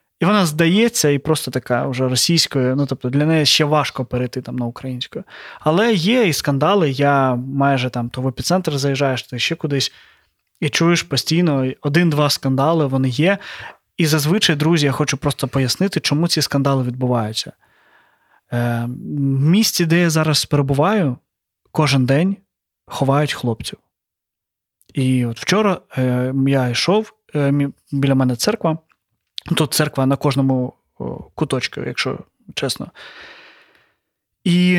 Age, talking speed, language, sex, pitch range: 20-39, 130 wpm, Ukrainian, male, 135-170 Hz